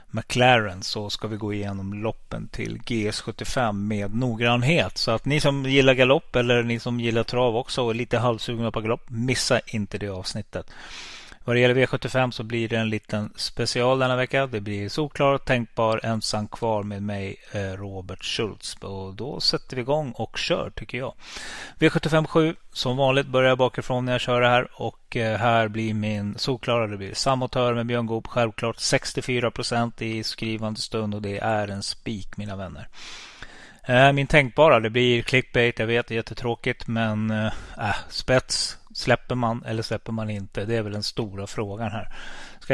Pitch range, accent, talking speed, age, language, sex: 105-125 Hz, native, 175 wpm, 30-49, Swedish, male